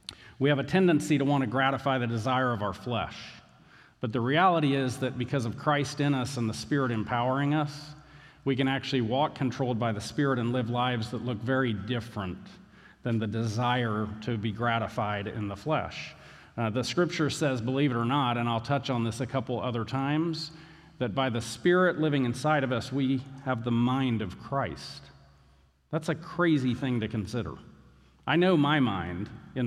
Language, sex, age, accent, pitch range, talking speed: English, male, 50-69, American, 110-140 Hz, 190 wpm